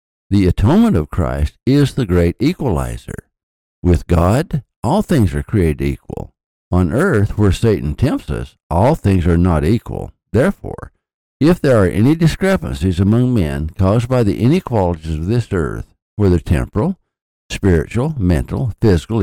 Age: 60-79